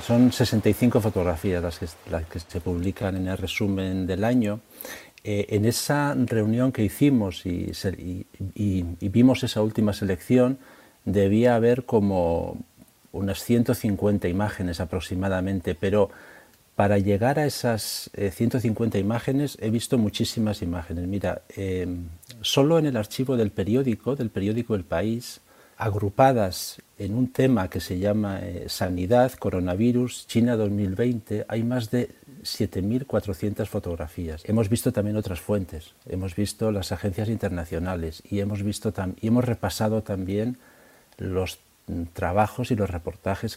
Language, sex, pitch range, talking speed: Spanish, male, 95-115 Hz, 130 wpm